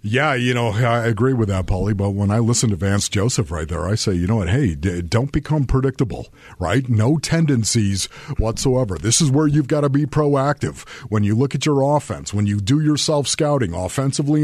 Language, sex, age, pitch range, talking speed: English, male, 50-69, 115-165 Hz, 210 wpm